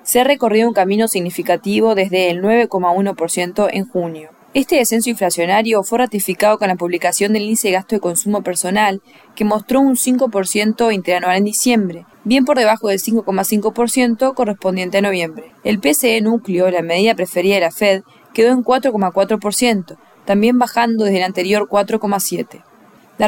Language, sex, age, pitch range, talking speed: English, female, 20-39, 185-225 Hz, 155 wpm